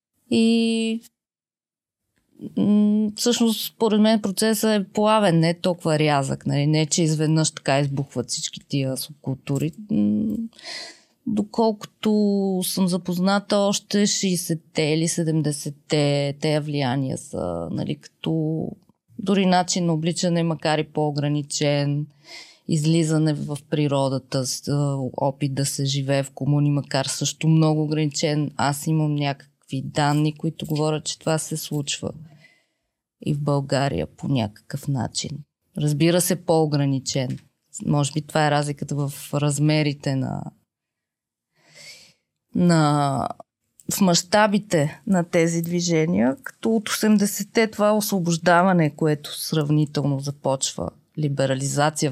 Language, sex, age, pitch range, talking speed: Bulgarian, female, 20-39, 145-185 Hz, 110 wpm